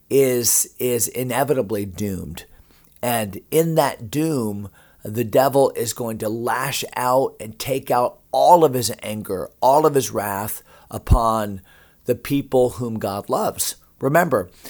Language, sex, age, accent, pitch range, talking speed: English, male, 40-59, American, 110-140 Hz, 135 wpm